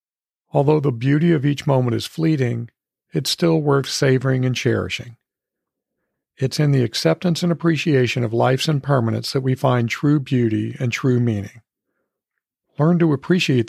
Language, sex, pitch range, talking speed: English, male, 120-150 Hz, 150 wpm